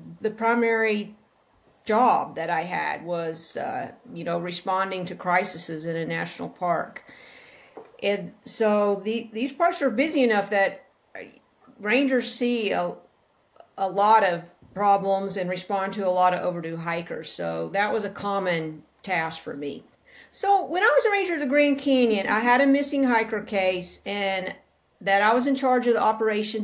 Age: 50-69